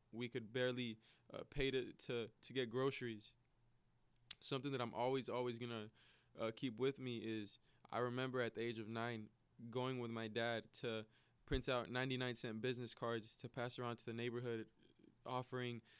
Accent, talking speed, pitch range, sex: American, 175 wpm, 115-130 Hz, male